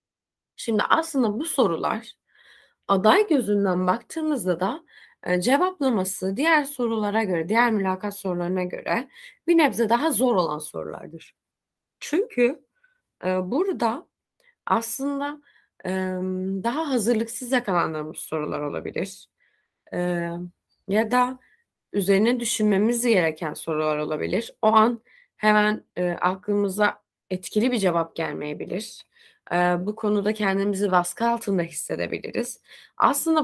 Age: 20-39